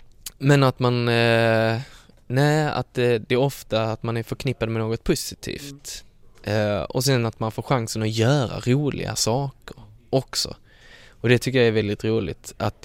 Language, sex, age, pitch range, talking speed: English, male, 10-29, 105-130 Hz, 175 wpm